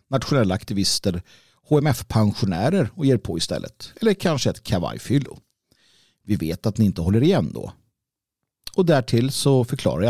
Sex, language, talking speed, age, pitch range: male, Swedish, 145 wpm, 50-69, 105-150 Hz